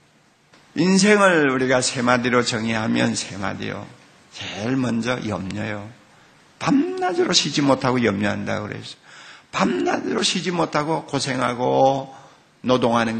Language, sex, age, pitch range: Korean, male, 50-69, 115-190 Hz